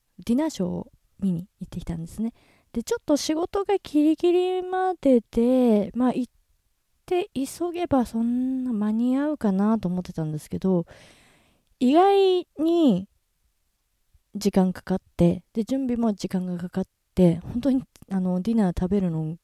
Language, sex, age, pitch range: Japanese, female, 20-39, 165-235 Hz